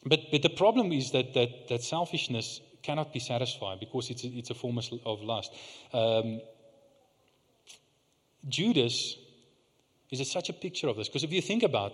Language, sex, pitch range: English, male, 125-170 Hz